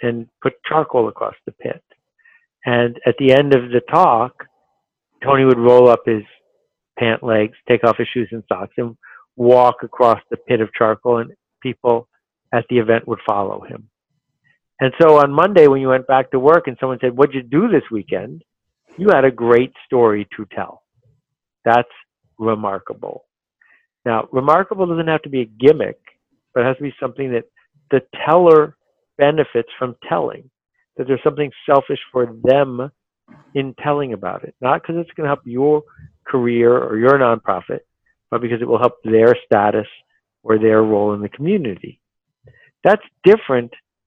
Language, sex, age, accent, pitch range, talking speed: English, male, 50-69, American, 115-140 Hz, 170 wpm